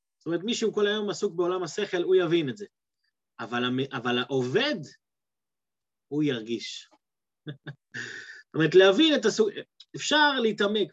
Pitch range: 140-210 Hz